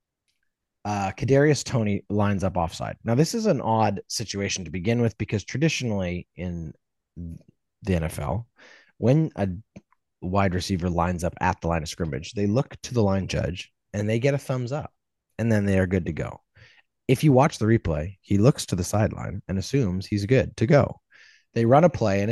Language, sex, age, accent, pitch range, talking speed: English, male, 30-49, American, 90-115 Hz, 190 wpm